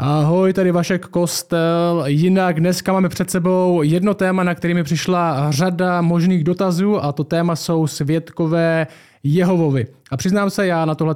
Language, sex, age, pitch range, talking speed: Czech, male, 20-39, 150-180 Hz, 155 wpm